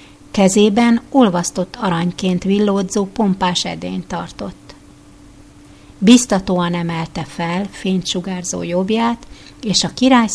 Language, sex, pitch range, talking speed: Hungarian, female, 175-215 Hz, 85 wpm